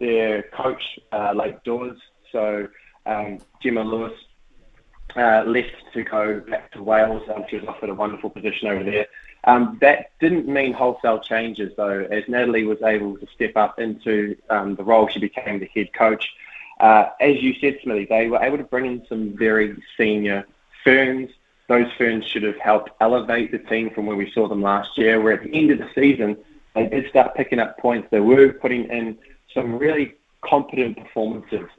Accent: Australian